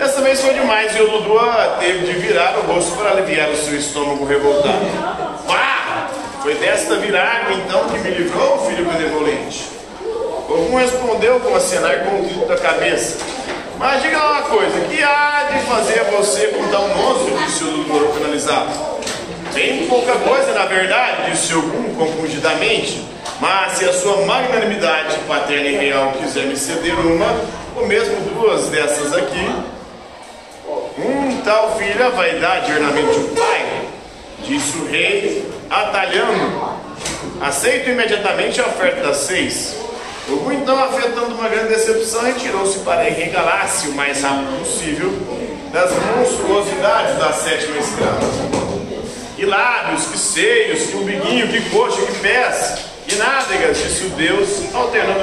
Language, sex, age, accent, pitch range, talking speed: Portuguese, male, 40-59, Brazilian, 175-290 Hz, 140 wpm